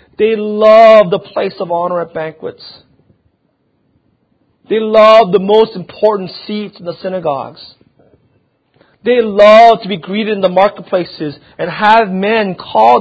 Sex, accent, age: male, American, 40-59